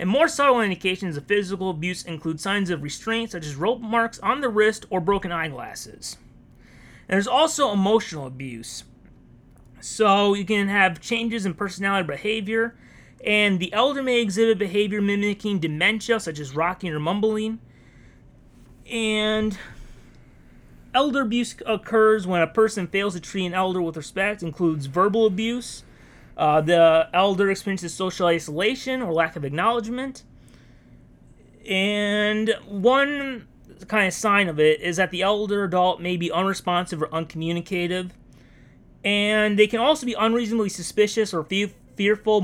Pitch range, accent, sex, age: 170-220 Hz, American, male, 30-49